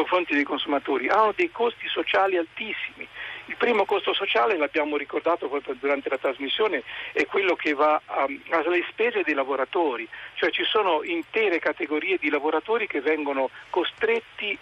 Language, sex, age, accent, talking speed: Italian, male, 50-69, native, 150 wpm